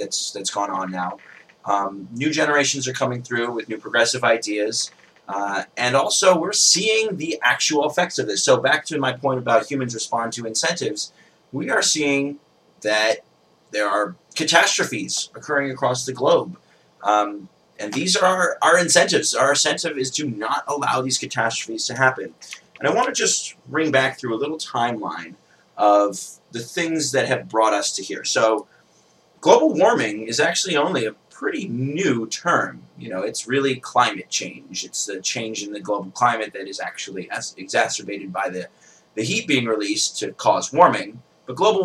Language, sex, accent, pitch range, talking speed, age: English, male, American, 110-140 Hz, 170 wpm, 30-49